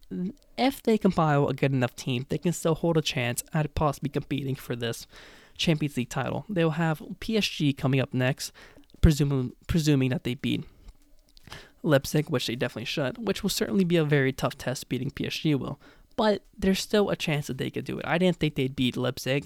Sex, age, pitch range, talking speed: male, 20-39, 130-170 Hz, 195 wpm